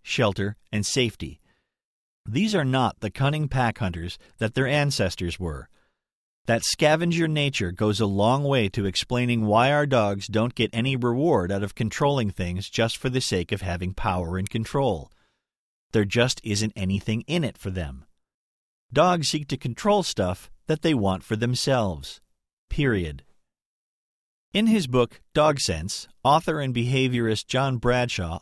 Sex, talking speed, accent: male, 150 wpm, American